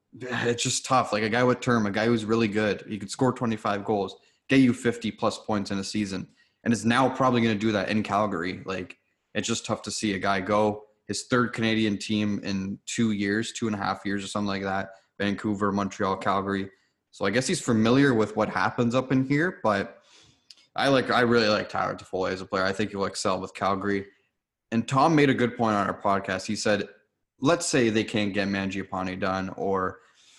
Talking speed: 220 wpm